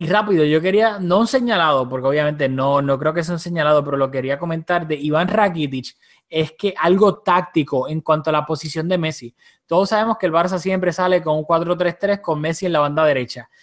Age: 20-39